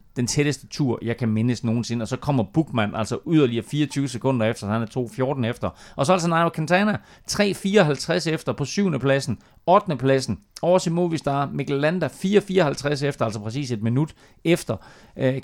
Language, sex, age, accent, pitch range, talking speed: Danish, male, 30-49, native, 115-155 Hz, 170 wpm